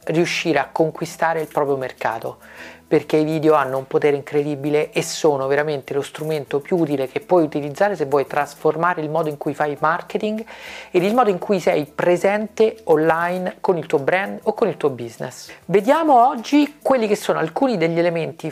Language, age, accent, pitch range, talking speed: Italian, 40-59, native, 150-195 Hz, 185 wpm